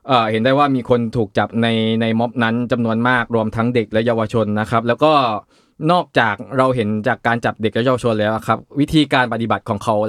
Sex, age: male, 20-39